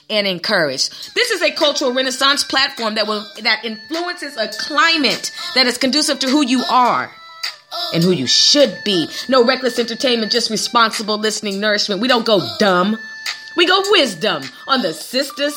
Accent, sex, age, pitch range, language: American, female, 30-49, 185-270 Hz, Japanese